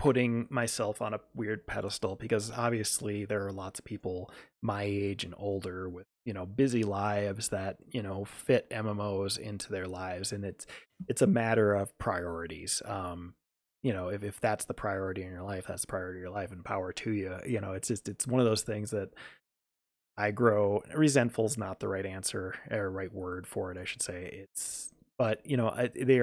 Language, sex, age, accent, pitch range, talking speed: English, male, 20-39, American, 95-120 Hz, 205 wpm